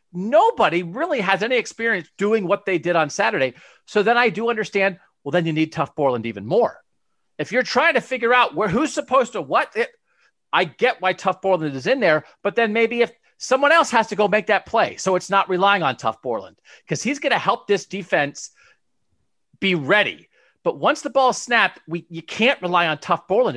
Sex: male